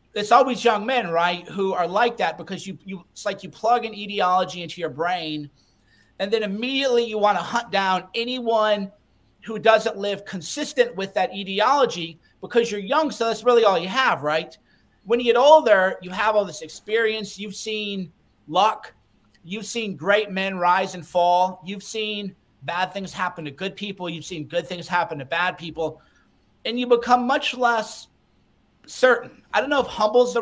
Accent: American